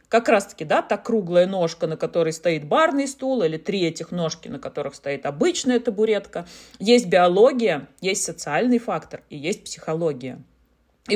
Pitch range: 170-245 Hz